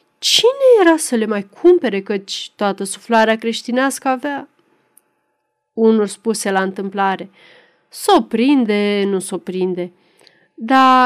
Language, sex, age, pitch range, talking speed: Romanian, female, 30-49, 200-290 Hz, 115 wpm